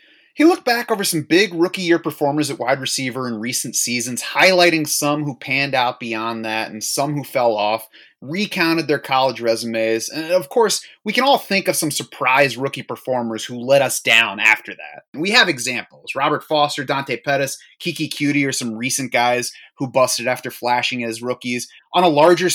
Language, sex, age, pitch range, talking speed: English, male, 30-49, 125-155 Hz, 190 wpm